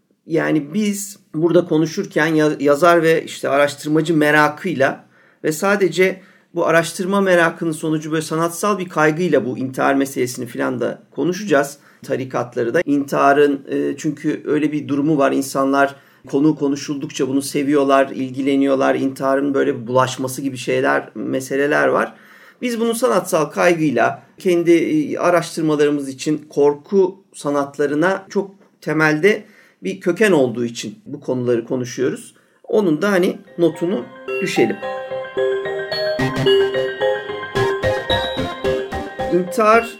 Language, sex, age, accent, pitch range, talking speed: Turkish, male, 40-59, native, 130-175 Hz, 105 wpm